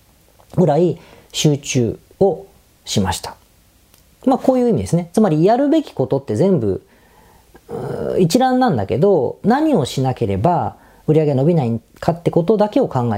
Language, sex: Japanese, female